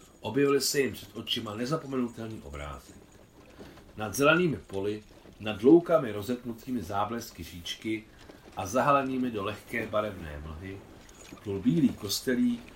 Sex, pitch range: male, 85-120 Hz